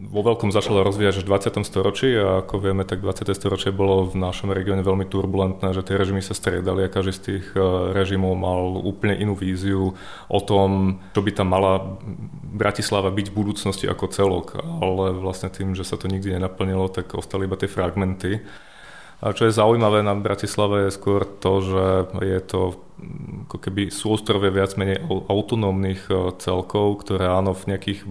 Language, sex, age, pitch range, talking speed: Czech, male, 30-49, 95-105 Hz, 175 wpm